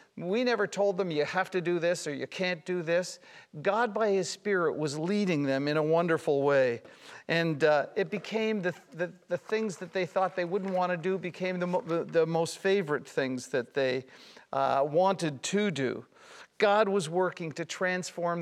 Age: 50-69